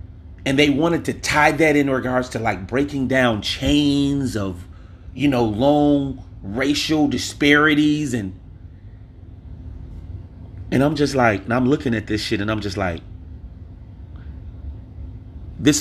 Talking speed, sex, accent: 130 wpm, male, American